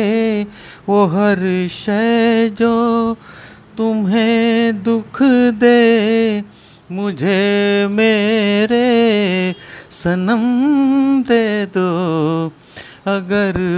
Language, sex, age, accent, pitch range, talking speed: Hindi, male, 30-49, native, 205-265 Hz, 50 wpm